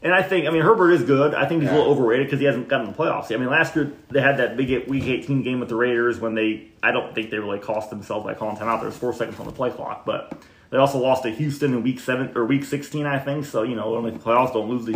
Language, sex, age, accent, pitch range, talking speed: English, male, 30-49, American, 110-135 Hz, 305 wpm